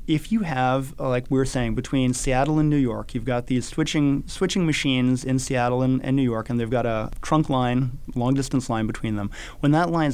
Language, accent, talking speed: English, American, 225 wpm